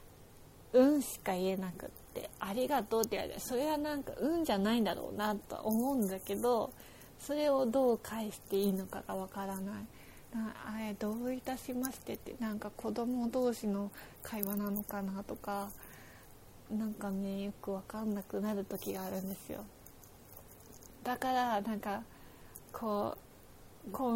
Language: Japanese